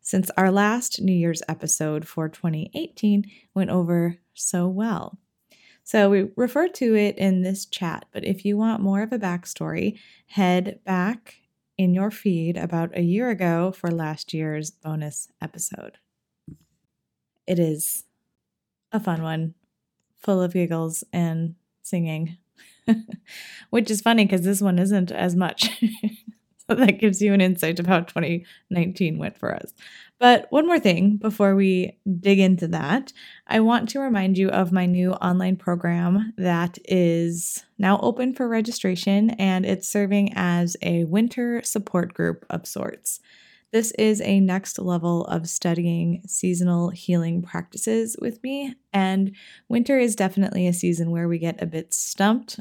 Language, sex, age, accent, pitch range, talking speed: English, female, 20-39, American, 175-215 Hz, 150 wpm